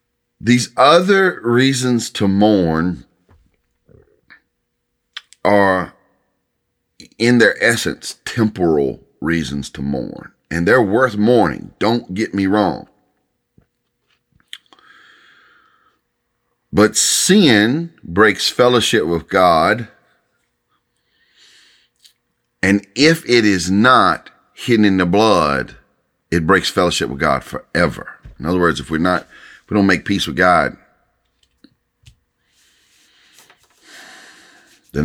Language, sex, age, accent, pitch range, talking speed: English, male, 40-59, American, 90-130 Hz, 95 wpm